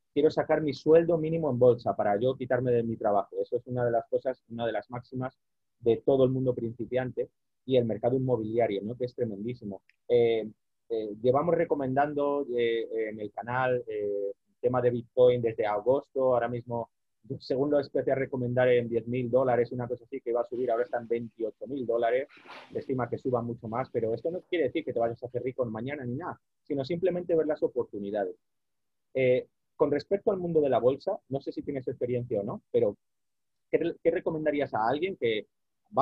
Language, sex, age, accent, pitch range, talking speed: Spanish, male, 30-49, Spanish, 115-155 Hz, 200 wpm